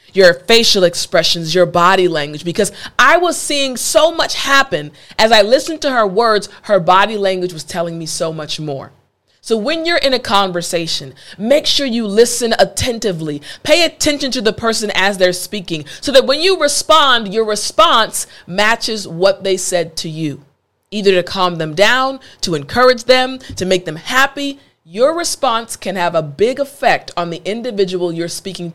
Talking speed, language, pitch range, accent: 175 wpm, English, 165-255 Hz, American